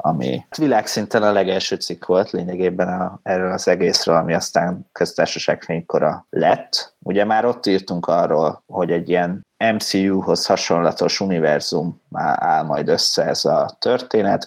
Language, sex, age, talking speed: Hungarian, male, 30-49, 135 wpm